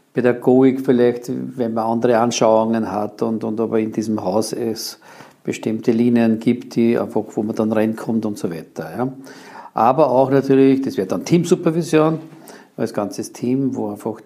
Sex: male